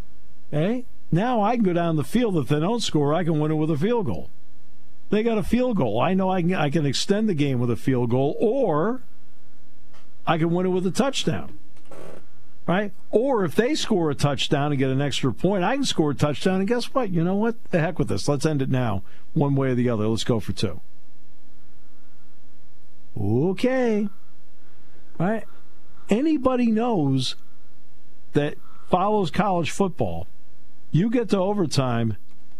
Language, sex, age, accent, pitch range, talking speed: English, male, 50-69, American, 110-185 Hz, 180 wpm